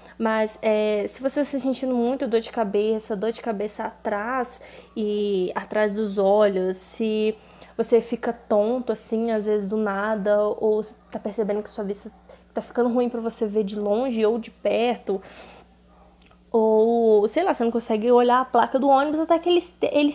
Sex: female